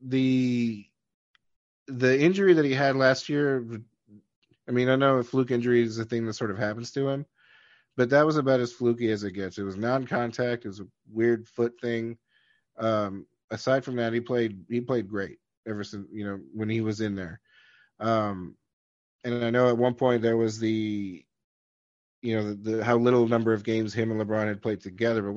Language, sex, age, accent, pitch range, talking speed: English, male, 30-49, American, 110-125 Hz, 205 wpm